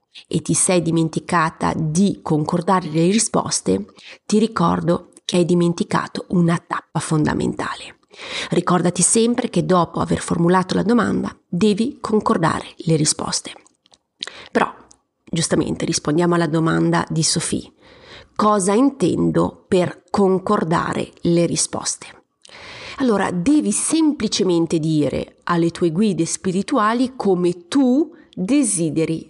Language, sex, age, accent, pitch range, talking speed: Italian, female, 30-49, native, 170-230 Hz, 105 wpm